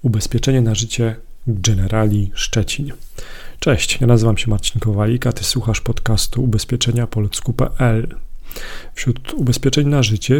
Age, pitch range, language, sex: 40-59, 110-125 Hz, Polish, male